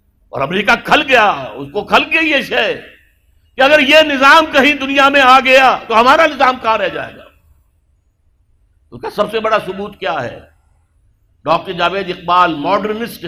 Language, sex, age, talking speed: Urdu, male, 60-79, 170 wpm